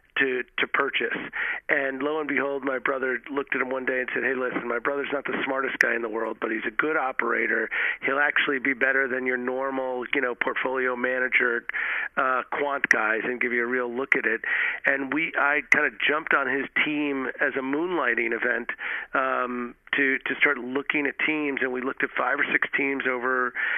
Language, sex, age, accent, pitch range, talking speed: English, male, 40-59, American, 125-140 Hz, 210 wpm